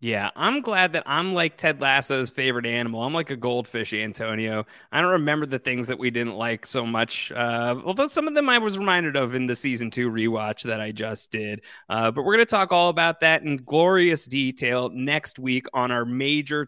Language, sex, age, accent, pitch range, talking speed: English, male, 30-49, American, 120-160 Hz, 220 wpm